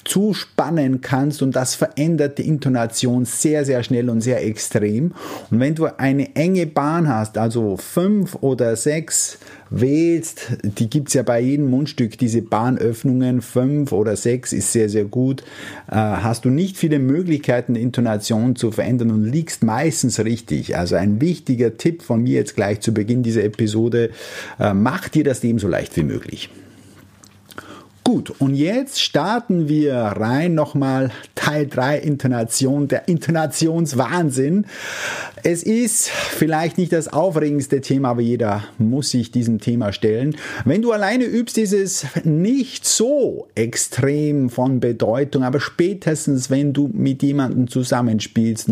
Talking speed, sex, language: 150 wpm, male, German